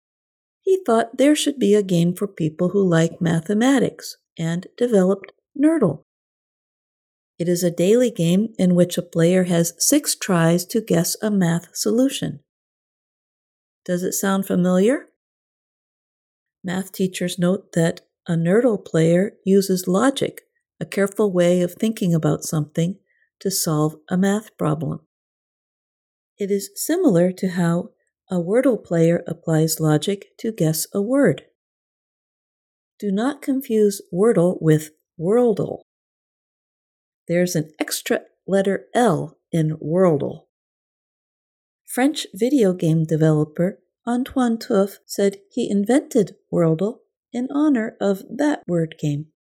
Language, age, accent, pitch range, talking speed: English, 50-69, American, 170-230 Hz, 120 wpm